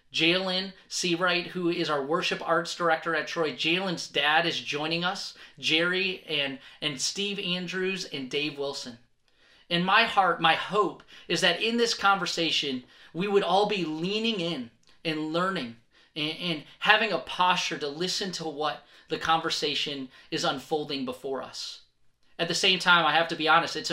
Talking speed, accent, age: 165 wpm, American, 30-49